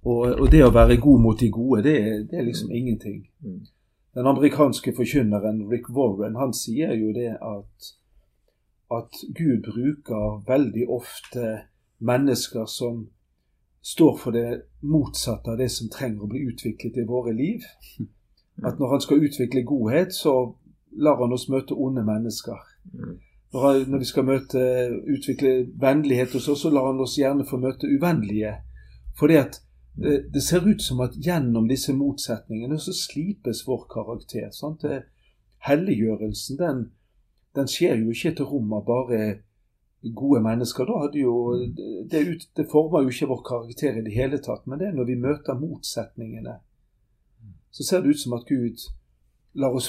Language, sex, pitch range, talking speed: English, male, 110-140 Hz, 155 wpm